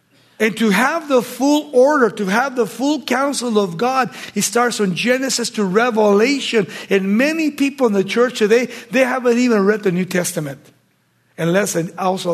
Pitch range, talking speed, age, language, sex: 175-235 Hz, 170 wpm, 60-79, English, male